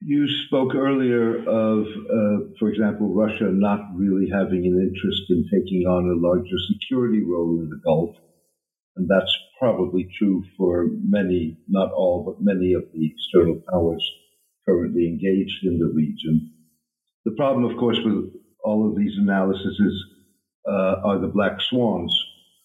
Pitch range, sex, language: 85-110 Hz, male, English